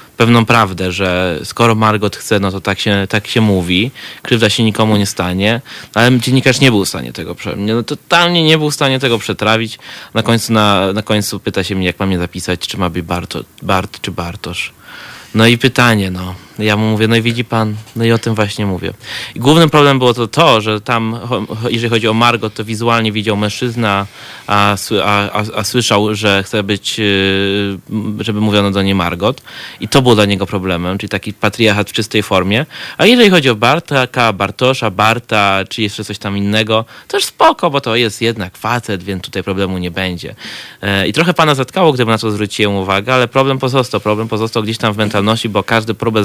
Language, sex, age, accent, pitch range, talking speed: Polish, male, 20-39, native, 100-115 Hz, 200 wpm